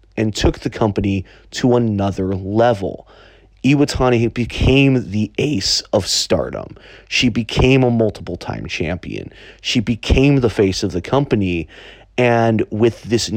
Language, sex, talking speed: English, male, 125 wpm